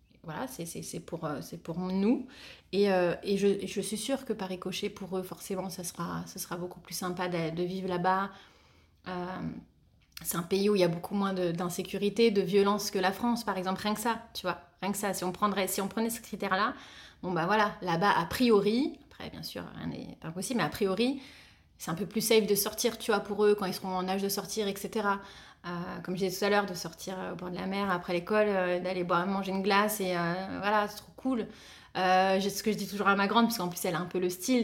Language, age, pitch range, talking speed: French, 30-49, 180-220 Hz, 260 wpm